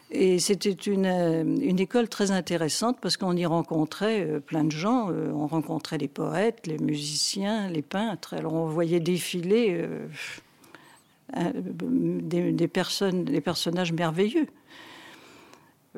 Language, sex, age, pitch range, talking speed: French, female, 60-79, 160-195 Hz, 115 wpm